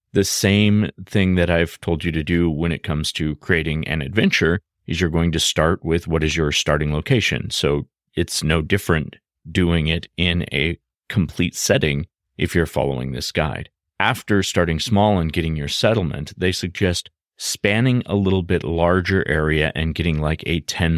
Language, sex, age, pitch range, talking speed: English, male, 30-49, 75-90 Hz, 175 wpm